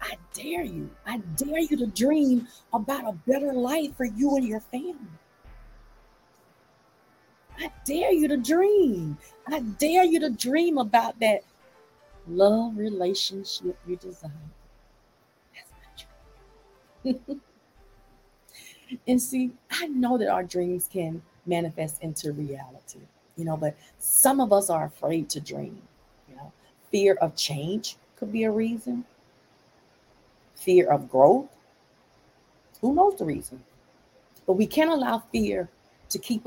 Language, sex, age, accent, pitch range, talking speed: English, female, 40-59, American, 160-250 Hz, 130 wpm